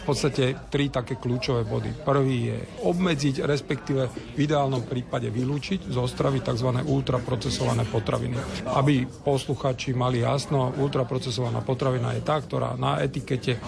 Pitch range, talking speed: 125-140 Hz, 130 wpm